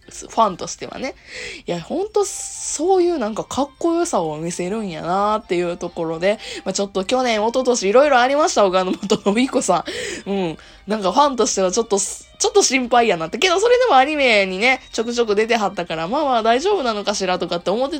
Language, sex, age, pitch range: Japanese, female, 20-39, 175-250 Hz